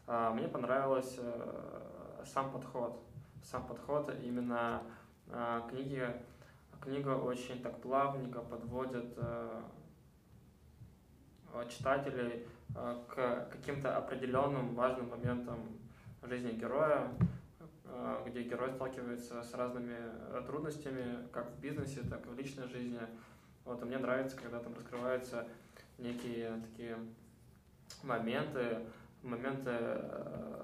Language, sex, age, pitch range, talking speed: Russian, male, 20-39, 120-130 Hz, 90 wpm